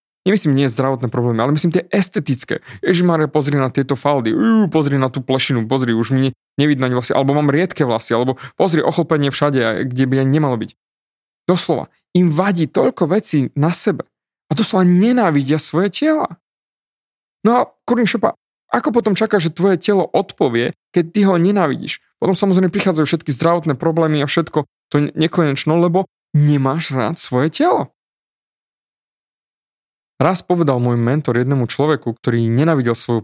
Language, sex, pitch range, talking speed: Slovak, male, 125-170 Hz, 155 wpm